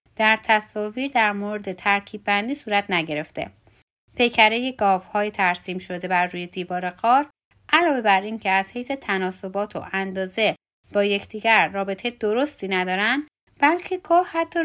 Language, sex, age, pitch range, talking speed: Persian, female, 30-49, 190-245 Hz, 135 wpm